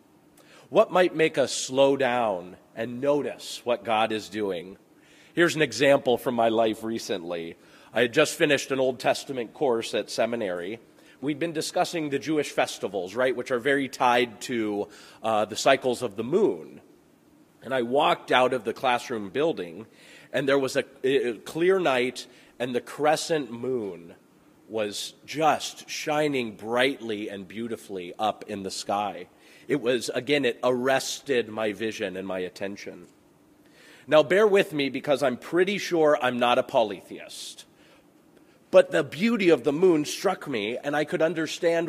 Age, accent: 30-49, American